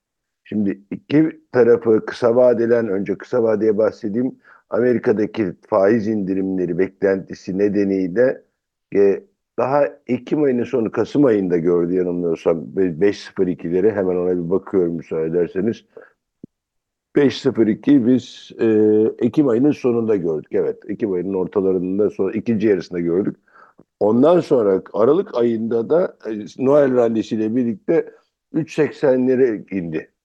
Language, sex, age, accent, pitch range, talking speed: Turkish, male, 60-79, native, 95-130 Hz, 115 wpm